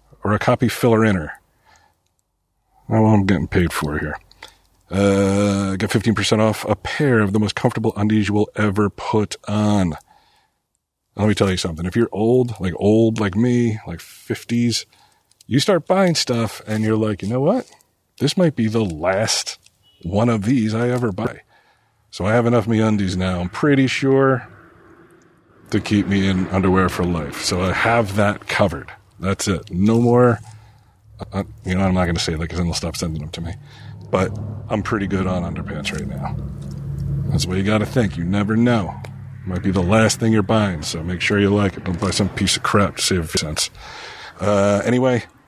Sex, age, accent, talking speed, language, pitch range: male, 40-59, American, 200 wpm, English, 95-120 Hz